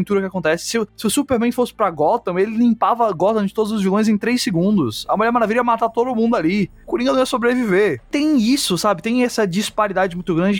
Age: 20-39